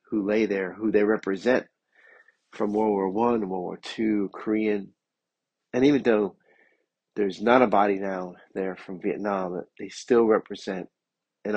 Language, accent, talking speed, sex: English, American, 150 wpm, male